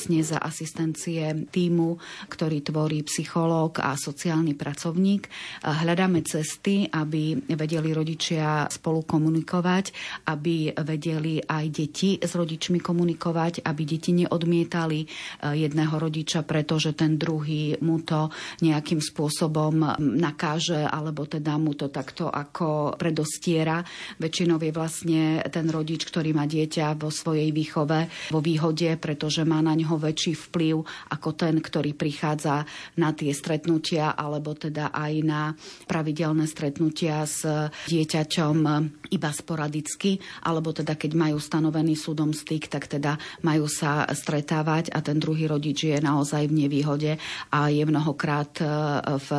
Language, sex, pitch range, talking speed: Slovak, female, 150-165 Hz, 125 wpm